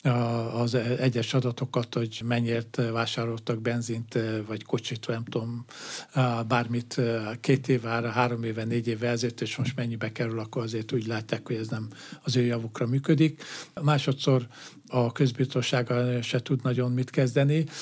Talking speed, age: 145 wpm, 50-69